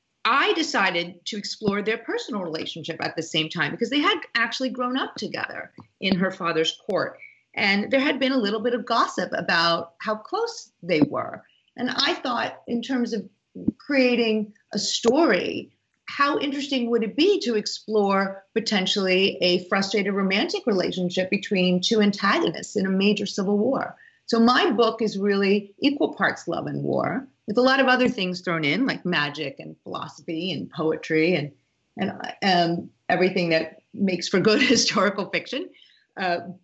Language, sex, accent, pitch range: English, female, American, 180-245 Hz